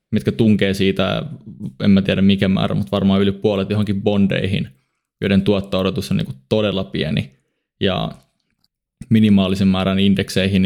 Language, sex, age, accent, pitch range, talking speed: Finnish, male, 20-39, native, 95-110 Hz, 135 wpm